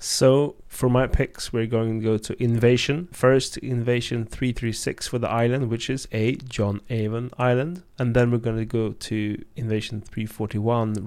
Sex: male